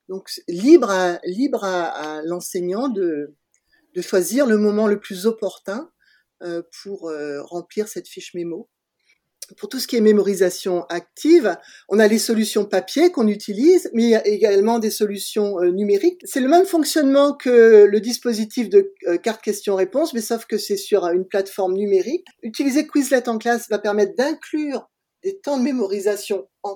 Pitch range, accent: 195-270 Hz, French